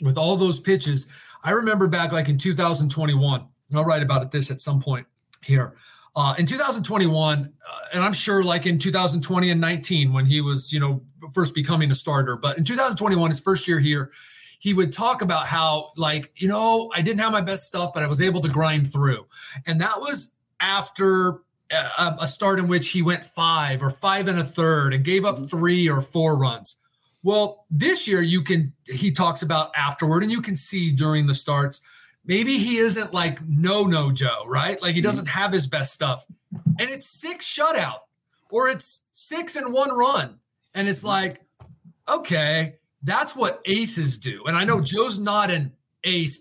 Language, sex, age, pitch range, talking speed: English, male, 30-49, 145-190 Hz, 190 wpm